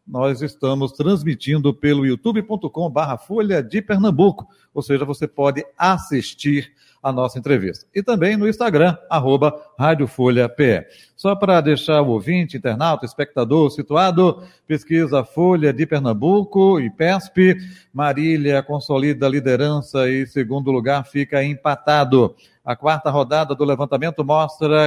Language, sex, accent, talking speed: Portuguese, male, Brazilian, 120 wpm